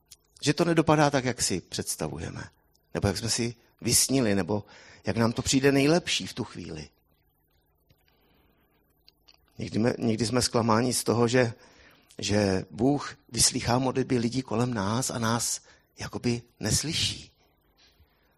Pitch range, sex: 80-120 Hz, male